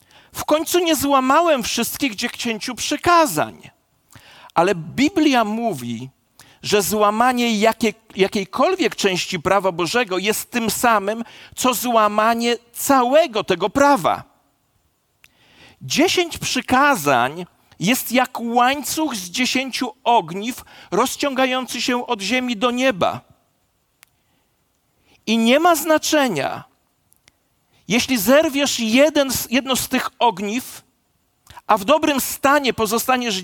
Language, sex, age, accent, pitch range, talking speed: Polish, male, 40-59, native, 225-300 Hz, 100 wpm